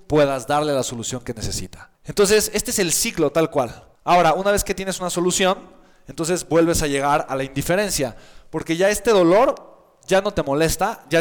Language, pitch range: Spanish, 145-190 Hz